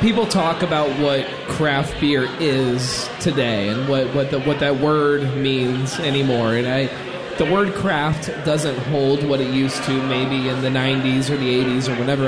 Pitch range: 135-160 Hz